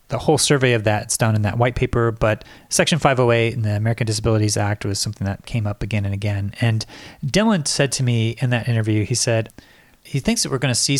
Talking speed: 240 wpm